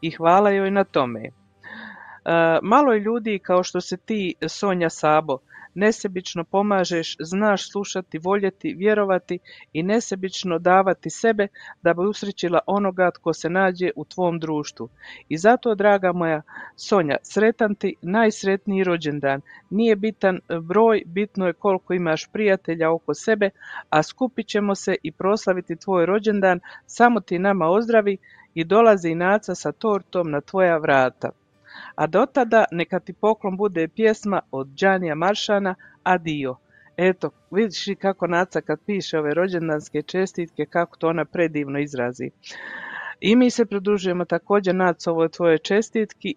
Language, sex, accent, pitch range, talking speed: Croatian, female, native, 160-200 Hz, 140 wpm